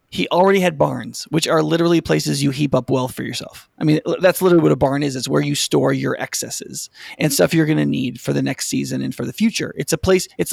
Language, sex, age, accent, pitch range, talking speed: English, male, 30-49, American, 145-195 Hz, 260 wpm